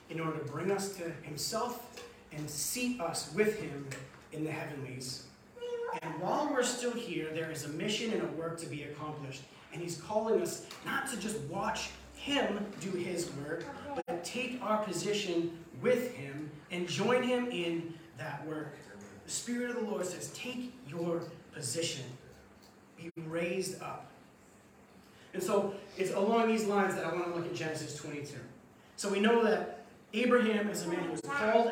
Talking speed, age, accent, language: 170 wpm, 30-49, American, English